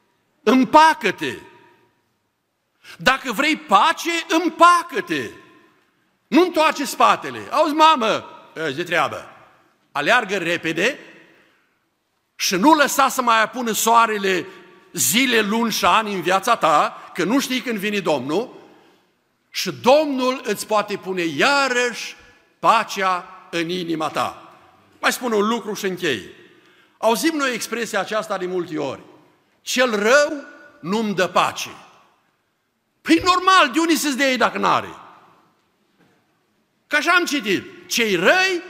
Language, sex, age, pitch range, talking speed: Romanian, male, 60-79, 190-295 Hz, 125 wpm